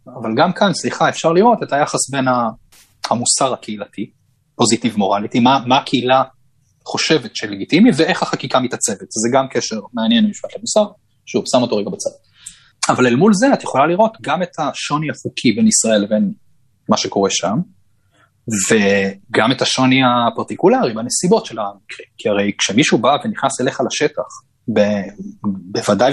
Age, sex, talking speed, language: 30-49, male, 155 wpm, Hebrew